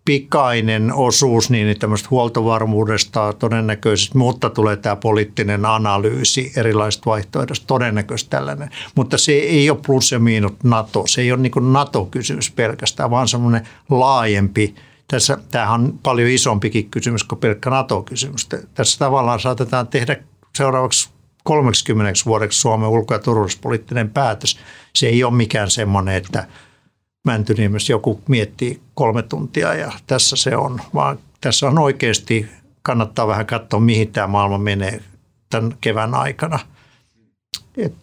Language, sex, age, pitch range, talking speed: Finnish, male, 60-79, 110-135 Hz, 130 wpm